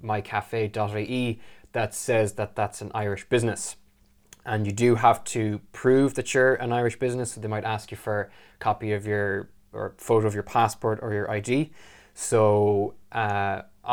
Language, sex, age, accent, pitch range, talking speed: English, male, 20-39, Irish, 105-120 Hz, 170 wpm